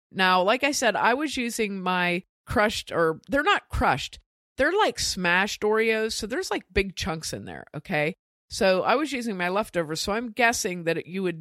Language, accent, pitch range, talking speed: English, American, 160-205 Hz, 195 wpm